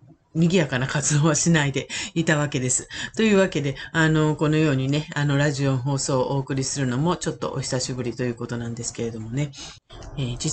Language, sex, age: Japanese, female, 40-59